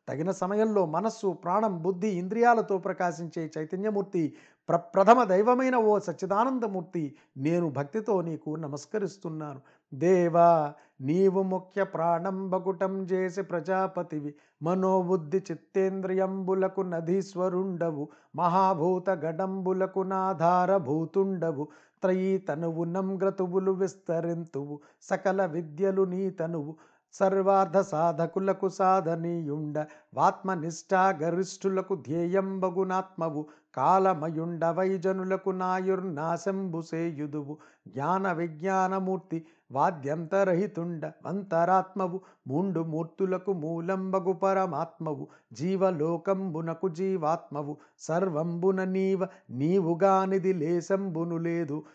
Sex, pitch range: male, 165-190 Hz